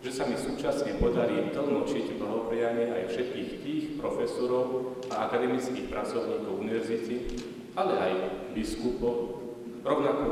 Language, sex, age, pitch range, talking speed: Slovak, male, 40-59, 115-130 Hz, 115 wpm